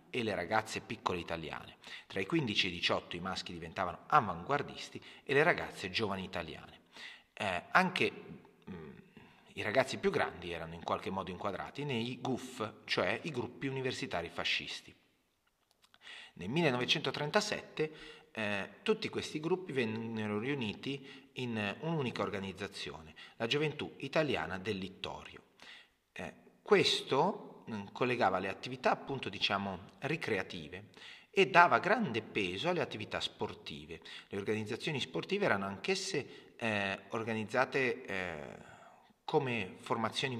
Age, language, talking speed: 30-49, Italian, 120 wpm